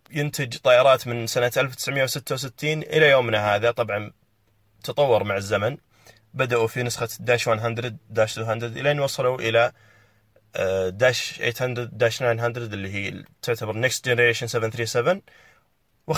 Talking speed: 120 wpm